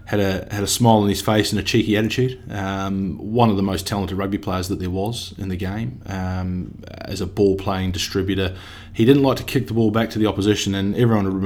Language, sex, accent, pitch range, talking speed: English, male, Australian, 95-105 Hz, 240 wpm